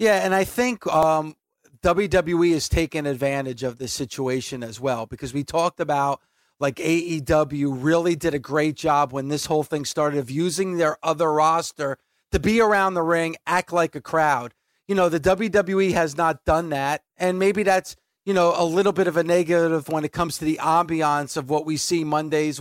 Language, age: English, 30-49